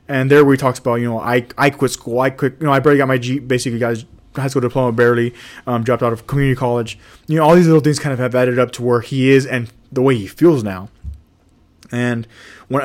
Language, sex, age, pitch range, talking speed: English, male, 20-39, 115-140 Hz, 255 wpm